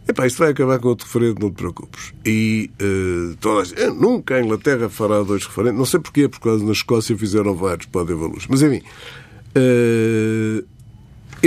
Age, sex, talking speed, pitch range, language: 50-69, male, 175 wpm, 110-135 Hz, Portuguese